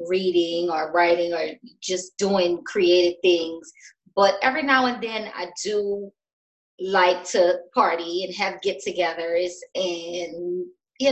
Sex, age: female, 20-39